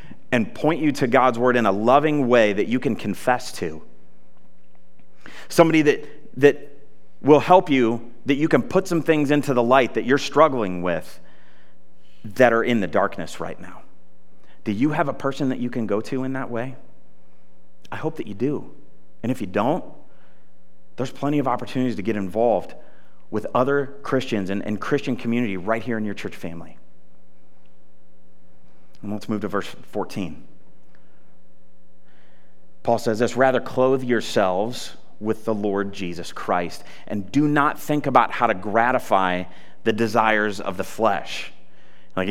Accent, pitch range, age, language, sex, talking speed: American, 100-140 Hz, 30-49, English, male, 160 wpm